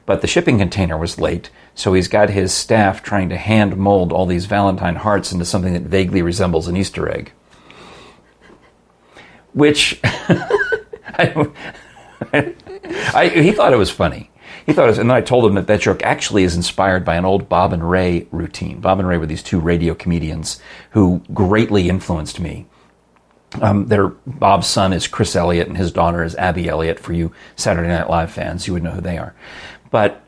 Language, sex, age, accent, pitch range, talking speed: English, male, 40-59, American, 85-100 Hz, 185 wpm